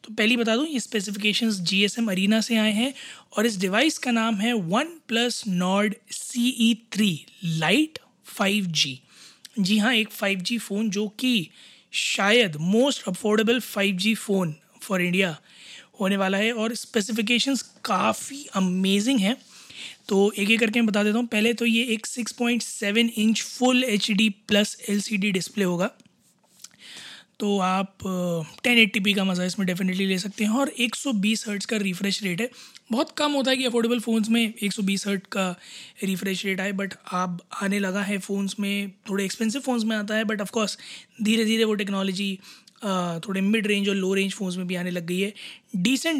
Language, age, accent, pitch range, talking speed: Hindi, 20-39, native, 195-230 Hz, 170 wpm